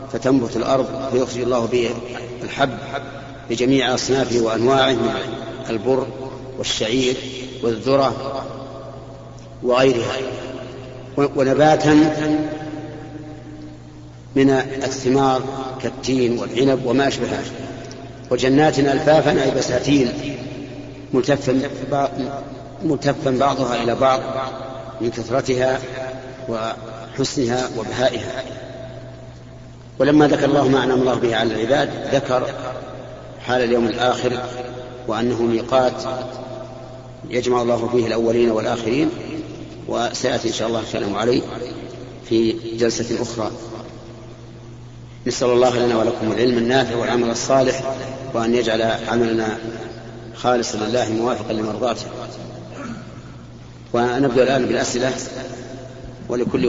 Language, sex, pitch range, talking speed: Arabic, male, 115-135 Hz, 85 wpm